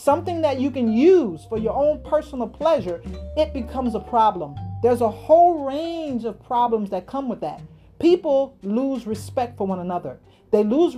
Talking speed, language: 175 wpm, English